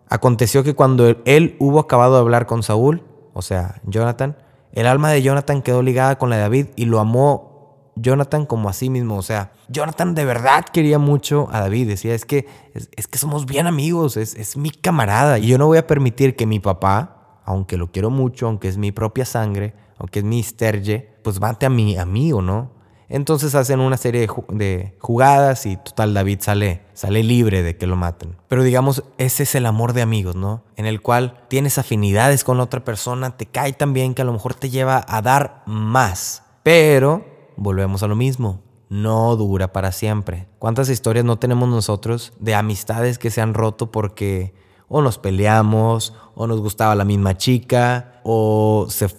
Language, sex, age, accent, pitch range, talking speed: Spanish, male, 20-39, Mexican, 105-135 Hz, 195 wpm